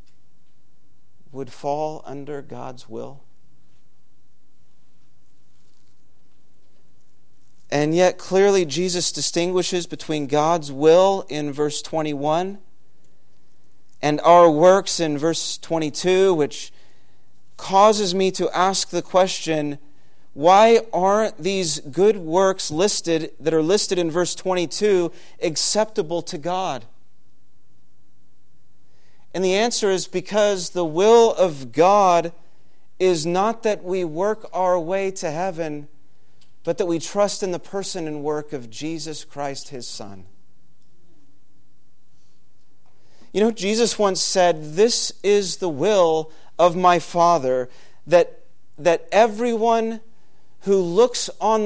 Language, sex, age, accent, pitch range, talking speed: English, male, 40-59, American, 150-195 Hz, 110 wpm